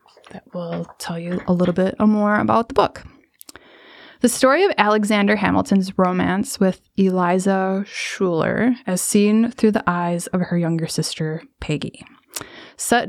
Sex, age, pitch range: female, 20-39, 180-225 Hz